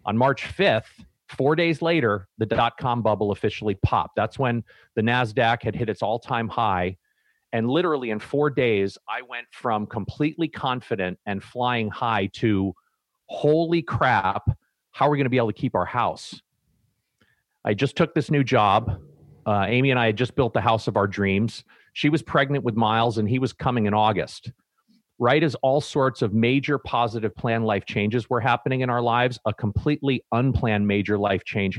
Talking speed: 185 wpm